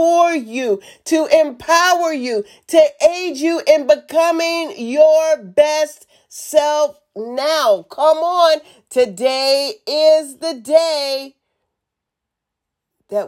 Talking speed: 90 wpm